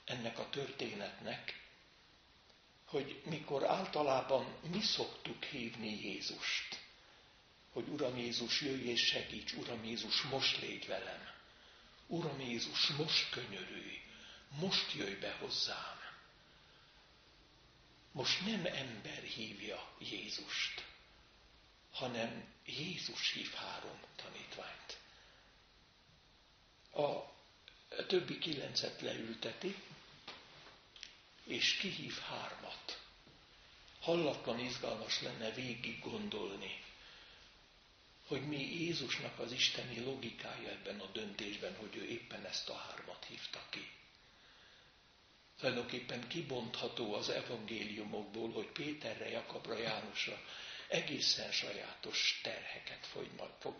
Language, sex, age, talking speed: Hungarian, male, 60-79, 90 wpm